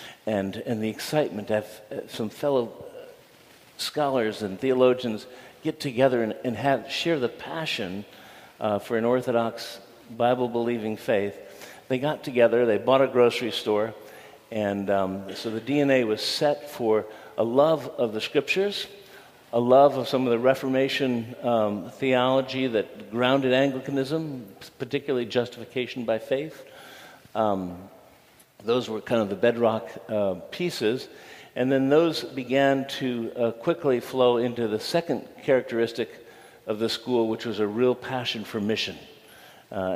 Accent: American